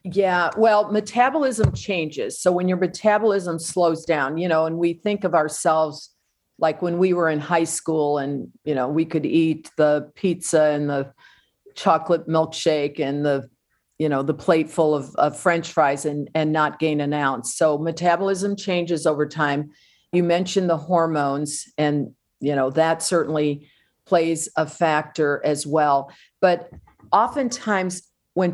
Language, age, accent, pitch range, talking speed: English, 50-69, American, 150-175 Hz, 160 wpm